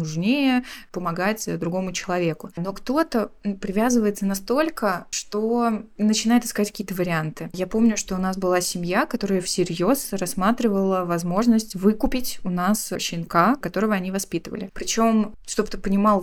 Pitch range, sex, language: 175-215 Hz, female, Russian